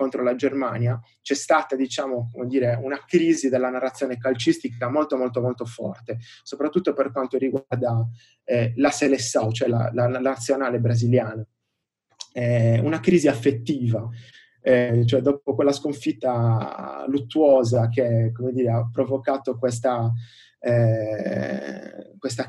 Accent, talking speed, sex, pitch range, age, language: native, 125 wpm, male, 120-140 Hz, 20-39, Italian